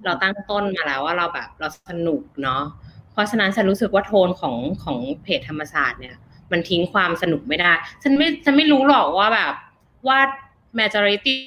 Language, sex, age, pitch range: Thai, female, 20-39, 170-240 Hz